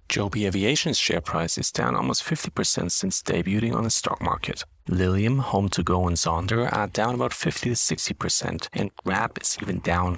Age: 40-59